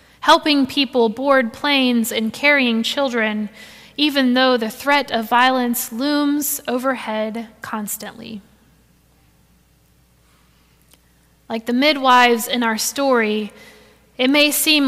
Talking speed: 100 wpm